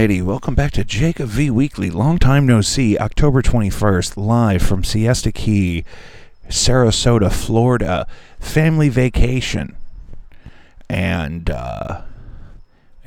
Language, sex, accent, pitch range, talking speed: English, male, American, 90-110 Hz, 100 wpm